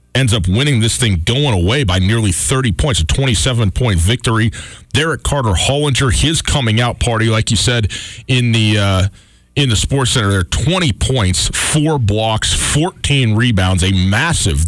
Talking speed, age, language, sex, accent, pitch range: 170 wpm, 40-59, English, male, American, 100-135 Hz